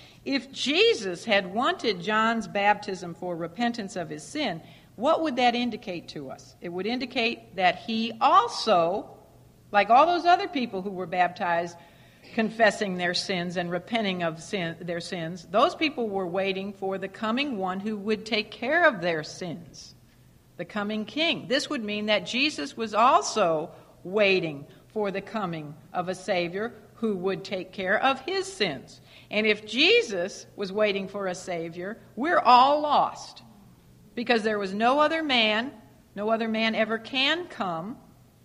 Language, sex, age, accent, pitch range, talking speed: English, female, 60-79, American, 175-230 Hz, 160 wpm